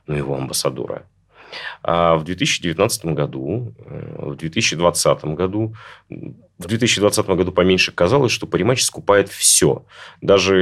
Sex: male